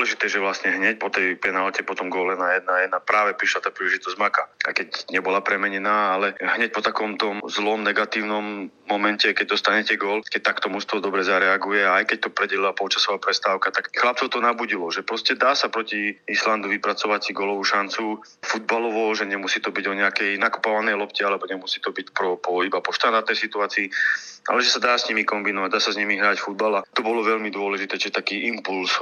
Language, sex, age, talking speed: Slovak, male, 30-49, 195 wpm